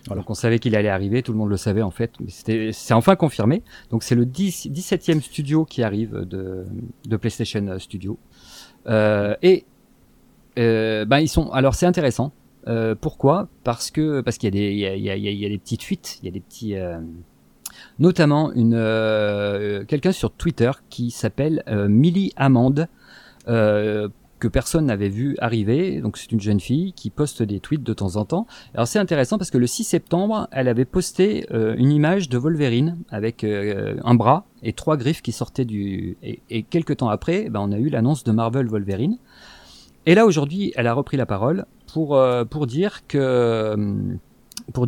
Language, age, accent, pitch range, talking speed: French, 40-59, French, 110-155 Hz, 195 wpm